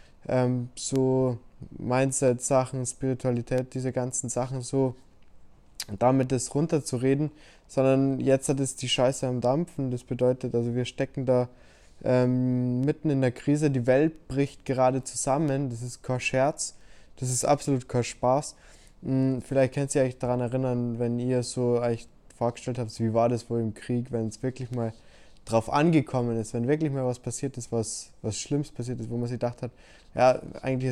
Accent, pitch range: German, 120-135 Hz